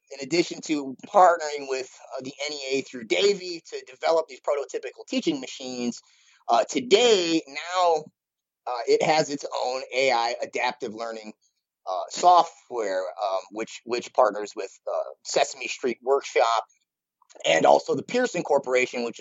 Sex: male